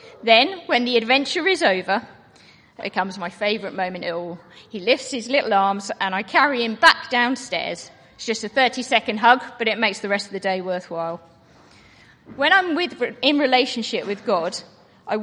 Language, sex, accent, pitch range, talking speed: English, female, British, 195-260 Hz, 180 wpm